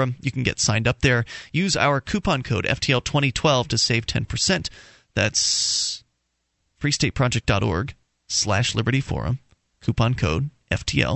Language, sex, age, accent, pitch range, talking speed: English, male, 30-49, American, 115-150 Hz, 125 wpm